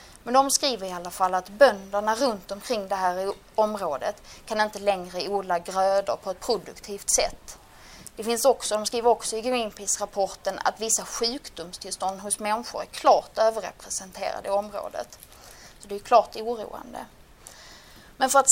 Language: Swedish